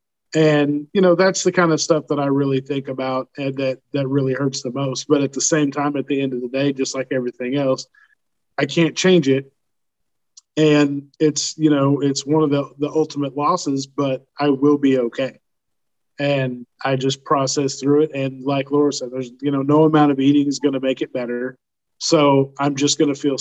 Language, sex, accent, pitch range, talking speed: English, male, American, 135-155 Hz, 210 wpm